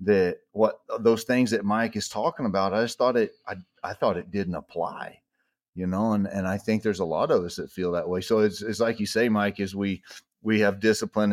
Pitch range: 95-110 Hz